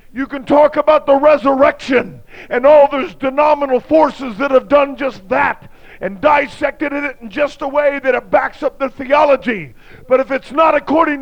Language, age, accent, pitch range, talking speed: English, 50-69, American, 245-290 Hz, 180 wpm